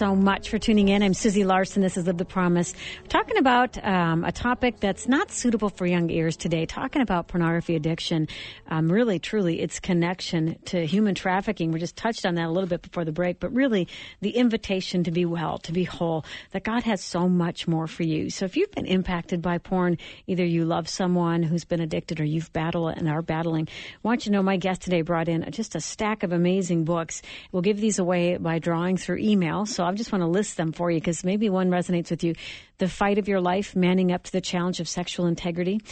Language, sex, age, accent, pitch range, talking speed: English, female, 50-69, American, 170-195 Hz, 235 wpm